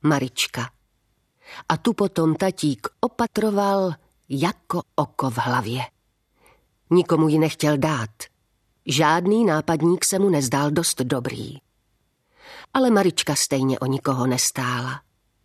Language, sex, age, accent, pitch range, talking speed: Czech, female, 40-59, native, 135-175 Hz, 105 wpm